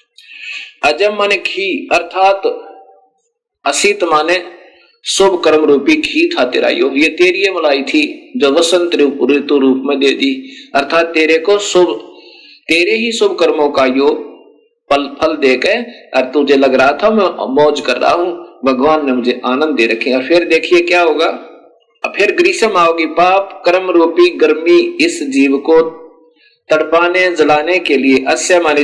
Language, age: Hindi, 50-69